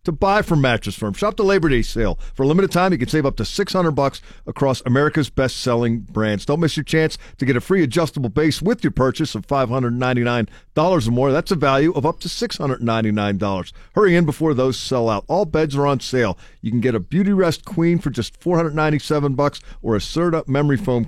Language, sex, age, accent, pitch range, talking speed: English, male, 50-69, American, 120-165 Hz, 210 wpm